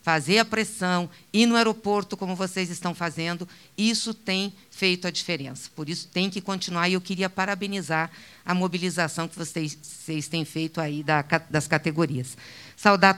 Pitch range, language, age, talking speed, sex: 165-220 Hz, Portuguese, 50-69, 160 wpm, female